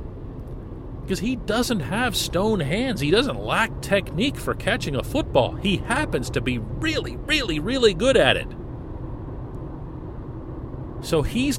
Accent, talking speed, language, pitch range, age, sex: American, 135 wpm, English, 115-150 Hz, 40-59, male